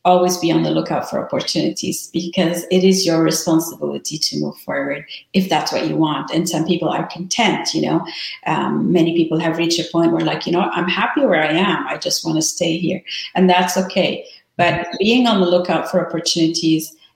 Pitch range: 165-190 Hz